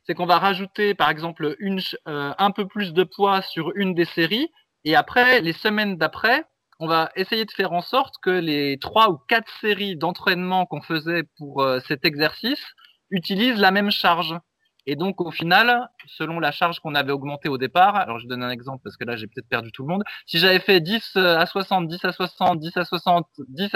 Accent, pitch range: French, 155-200 Hz